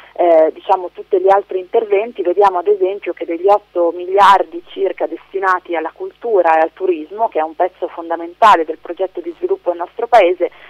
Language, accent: Italian, native